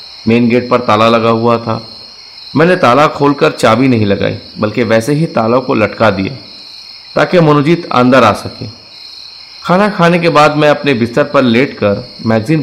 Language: Hindi